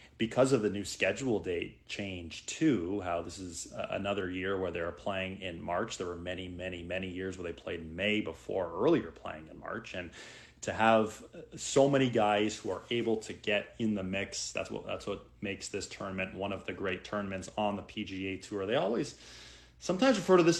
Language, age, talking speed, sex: English, 30-49, 205 wpm, male